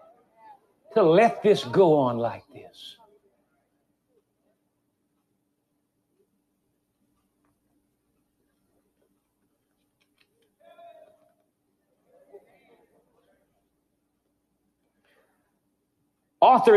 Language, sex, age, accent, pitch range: English, male, 60-79, American, 135-180 Hz